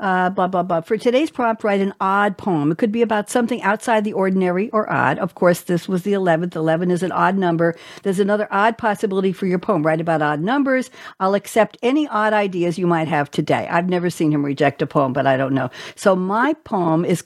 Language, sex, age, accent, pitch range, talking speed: English, female, 60-79, American, 160-215 Hz, 235 wpm